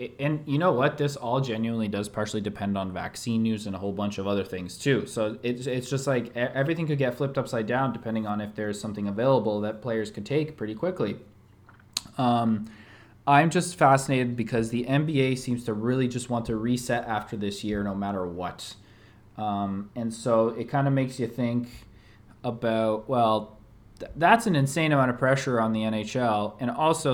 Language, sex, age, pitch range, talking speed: English, male, 20-39, 110-135 Hz, 190 wpm